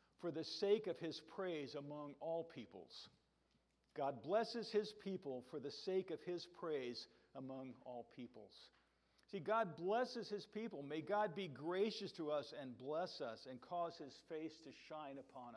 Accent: American